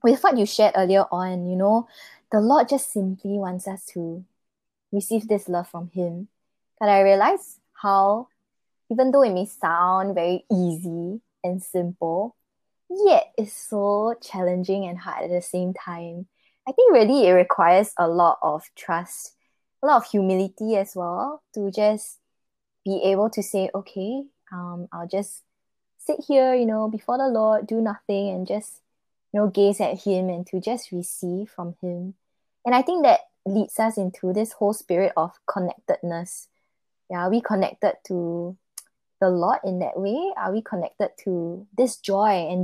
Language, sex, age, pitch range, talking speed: English, female, 20-39, 180-215 Hz, 165 wpm